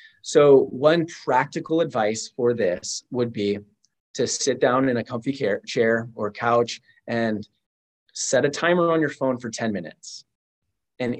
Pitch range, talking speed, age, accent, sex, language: 115-145 Hz, 150 wpm, 30-49, American, male, English